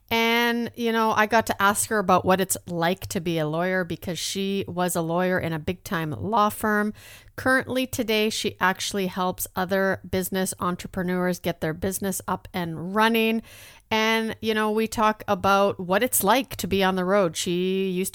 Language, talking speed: English, 190 wpm